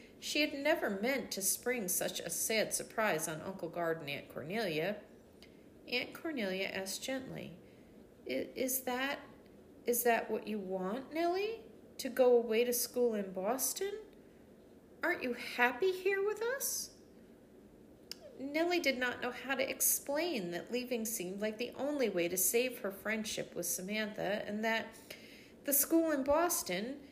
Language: English